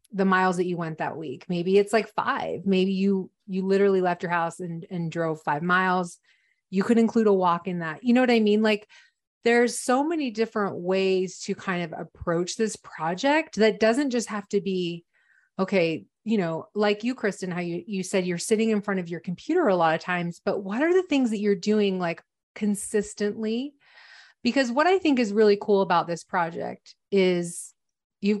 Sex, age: female, 30-49